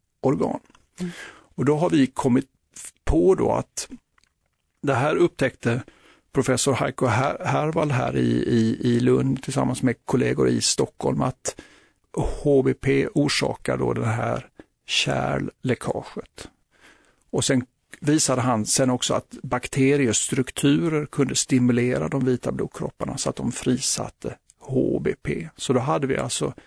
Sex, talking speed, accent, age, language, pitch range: male, 125 wpm, native, 50-69, Swedish, 120-140 Hz